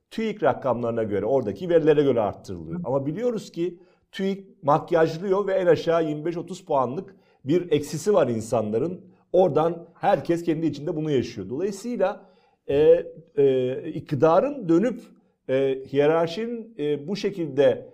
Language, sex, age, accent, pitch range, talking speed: Turkish, male, 50-69, native, 135-190 Hz, 125 wpm